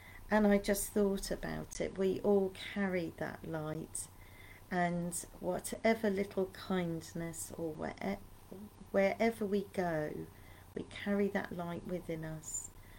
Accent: British